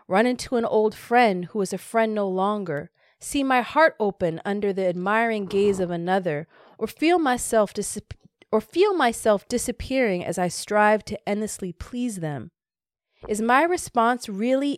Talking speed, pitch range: 160 wpm, 190-245 Hz